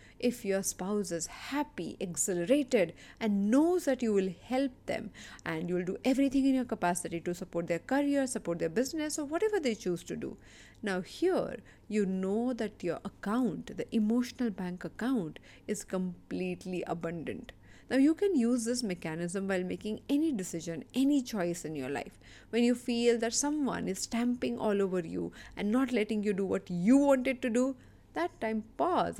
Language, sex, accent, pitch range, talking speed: English, female, Indian, 180-250 Hz, 175 wpm